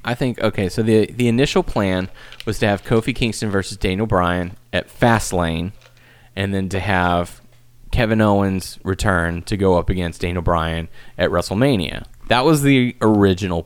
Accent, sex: American, male